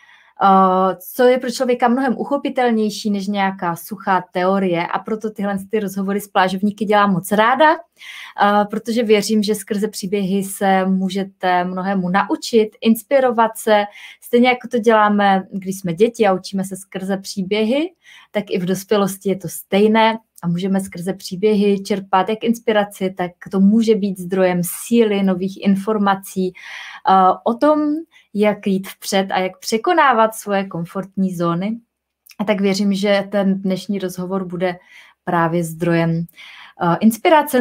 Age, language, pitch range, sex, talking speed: 20-39, Czech, 190-225 Hz, female, 135 wpm